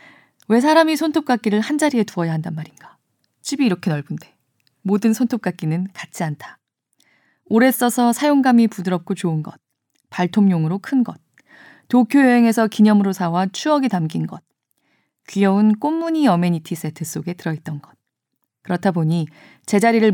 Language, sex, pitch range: Korean, female, 165-225 Hz